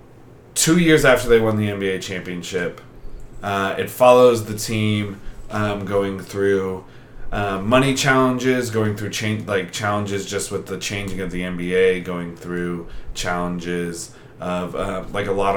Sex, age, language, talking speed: male, 20-39, English, 150 wpm